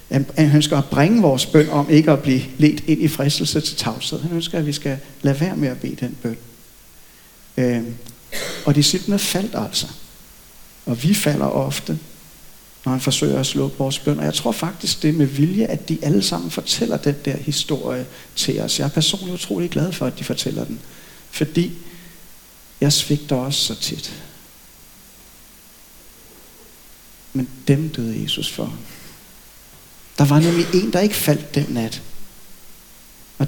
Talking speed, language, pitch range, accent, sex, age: 170 wpm, Danish, 135-170 Hz, native, male, 60-79